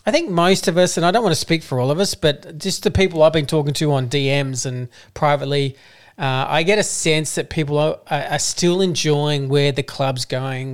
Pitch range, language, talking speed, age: 135-160 Hz, English, 235 wpm, 40-59